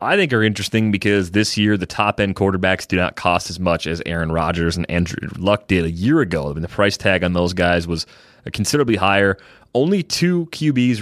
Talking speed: 200 wpm